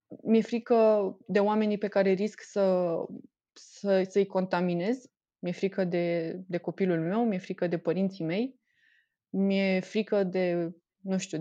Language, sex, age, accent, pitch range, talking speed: Romanian, female, 20-39, native, 170-205 Hz, 140 wpm